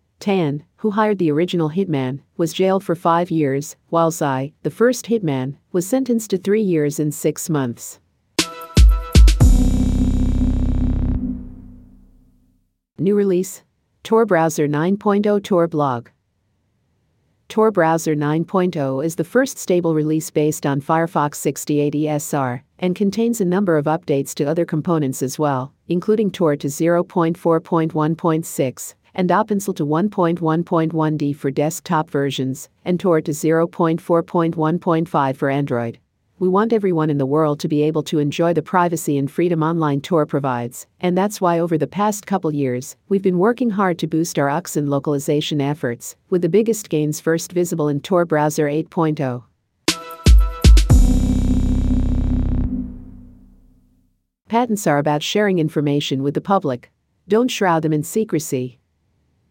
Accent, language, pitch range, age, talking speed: American, English, 140-175 Hz, 50-69, 130 wpm